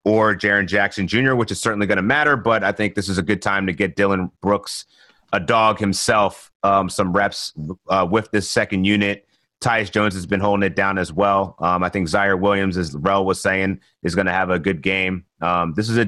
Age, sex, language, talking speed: 30-49, male, English, 230 wpm